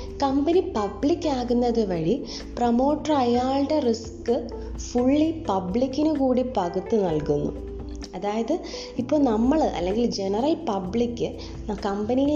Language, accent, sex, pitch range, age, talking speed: Malayalam, native, female, 190-260 Hz, 20-39, 85 wpm